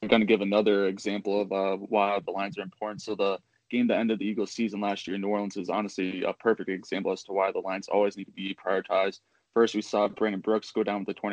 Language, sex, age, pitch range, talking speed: English, male, 20-39, 95-110 Hz, 275 wpm